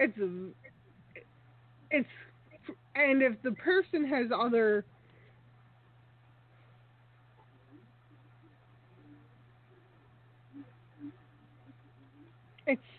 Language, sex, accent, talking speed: English, female, American, 45 wpm